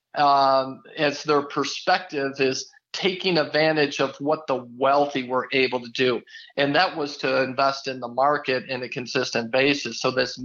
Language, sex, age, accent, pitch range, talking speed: English, male, 40-59, American, 135-155 Hz, 165 wpm